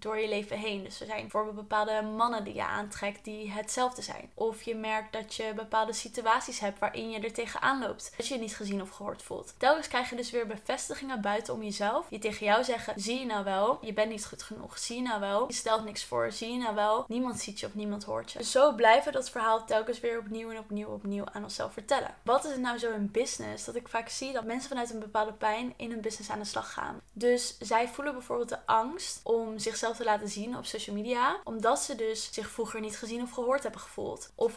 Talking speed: 245 wpm